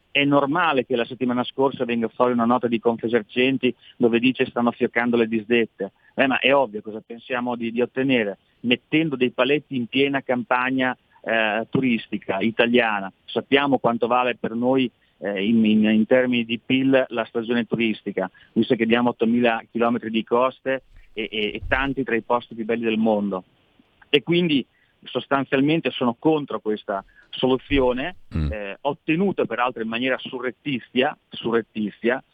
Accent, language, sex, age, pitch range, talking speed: native, Italian, male, 40-59, 115-130 Hz, 155 wpm